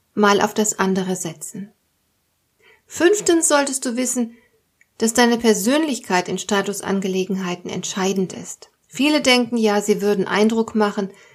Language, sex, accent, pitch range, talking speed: German, female, German, 195-235 Hz, 115 wpm